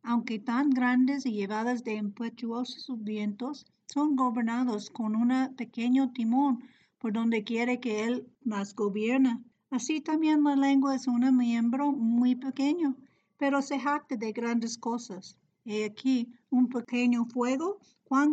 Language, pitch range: Spanish, 225-270 Hz